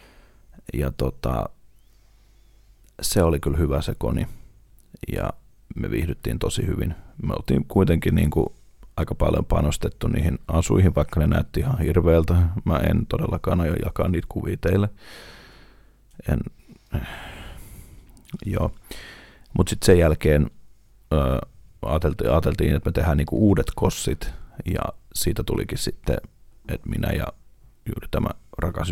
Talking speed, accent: 125 wpm, native